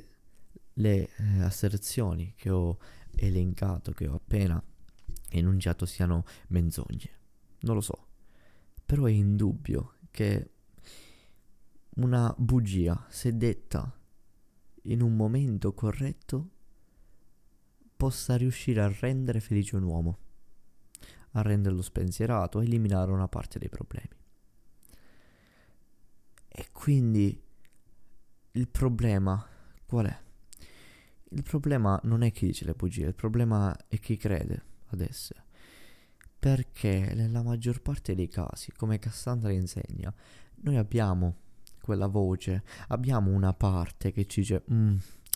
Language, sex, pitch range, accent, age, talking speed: Italian, male, 95-115 Hz, native, 20-39, 110 wpm